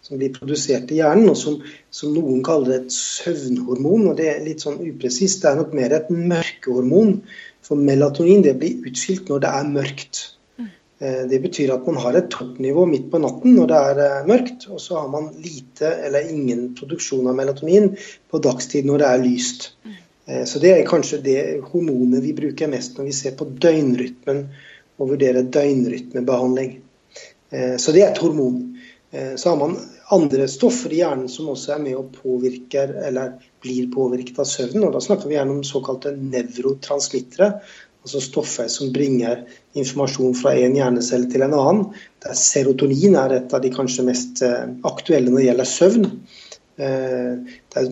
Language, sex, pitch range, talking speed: English, male, 130-160 Hz, 180 wpm